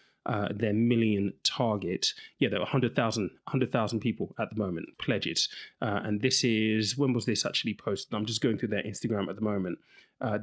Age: 30-49